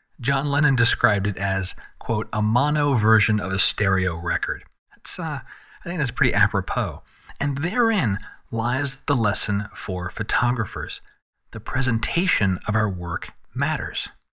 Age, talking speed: 40-59, 140 wpm